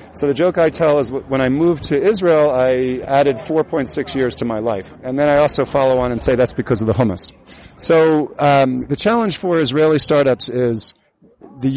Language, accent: English, American